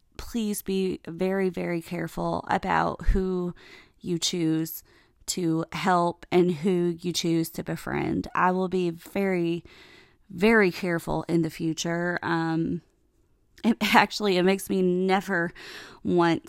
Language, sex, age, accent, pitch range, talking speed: English, female, 20-39, American, 170-200 Hz, 125 wpm